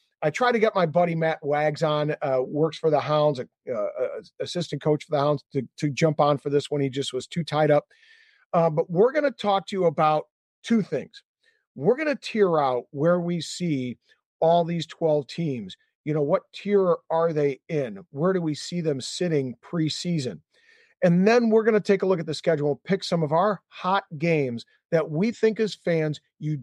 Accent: American